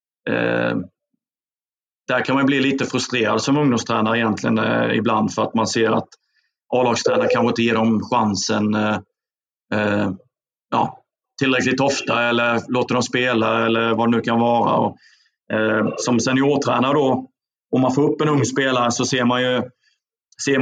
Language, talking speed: Danish, 160 wpm